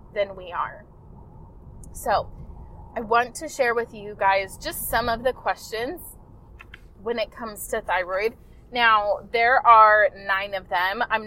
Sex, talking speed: female, 150 wpm